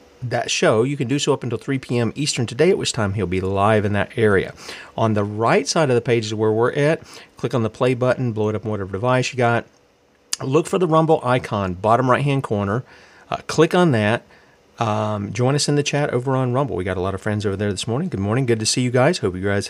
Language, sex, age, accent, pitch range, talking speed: English, male, 40-59, American, 105-125 Hz, 265 wpm